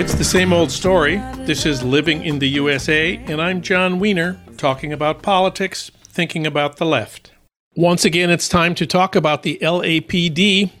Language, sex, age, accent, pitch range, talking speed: English, male, 50-69, American, 155-195 Hz, 170 wpm